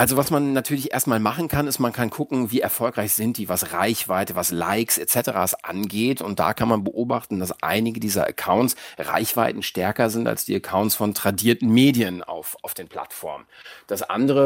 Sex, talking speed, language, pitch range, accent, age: male, 185 wpm, German, 105-135 Hz, German, 40-59